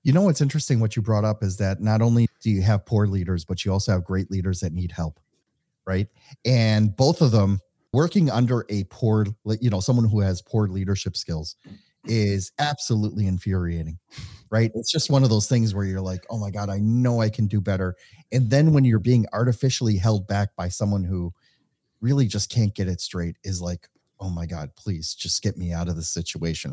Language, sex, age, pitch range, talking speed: English, male, 30-49, 90-115 Hz, 215 wpm